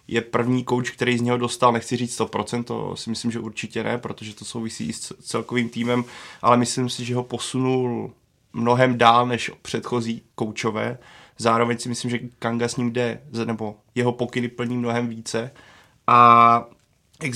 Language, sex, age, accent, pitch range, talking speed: Czech, male, 20-39, native, 115-125 Hz, 170 wpm